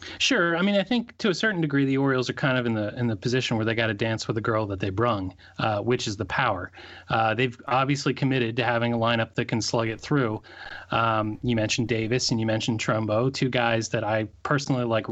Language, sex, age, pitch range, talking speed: English, male, 30-49, 110-140 Hz, 245 wpm